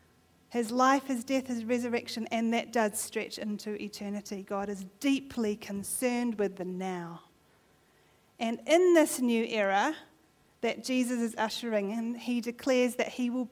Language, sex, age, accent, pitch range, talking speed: English, female, 40-59, Australian, 215-260 Hz, 150 wpm